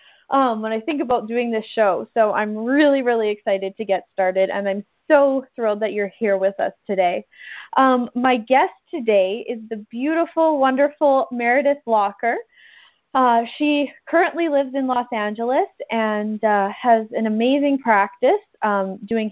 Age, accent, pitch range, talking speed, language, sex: 20-39, American, 210-260 Hz, 160 wpm, English, female